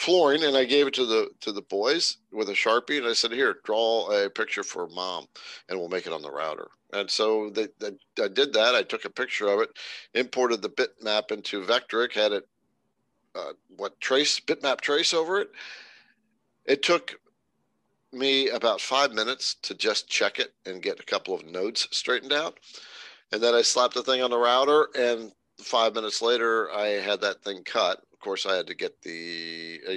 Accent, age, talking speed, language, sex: American, 50-69, 200 wpm, English, male